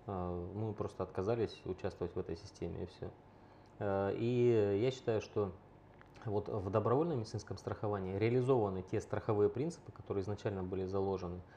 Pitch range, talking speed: 95-115 Hz, 130 wpm